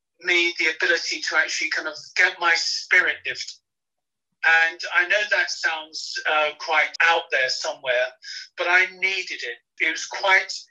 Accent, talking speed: British, 155 wpm